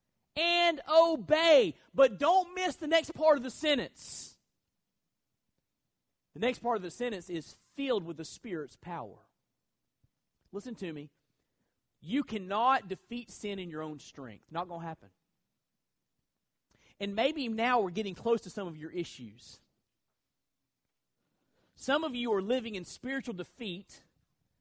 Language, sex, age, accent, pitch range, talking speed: English, male, 40-59, American, 180-280 Hz, 140 wpm